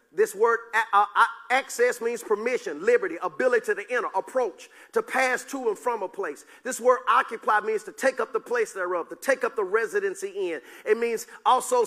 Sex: male